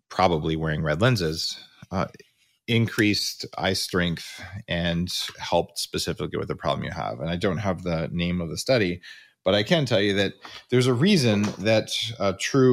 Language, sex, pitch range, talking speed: English, male, 95-125 Hz, 180 wpm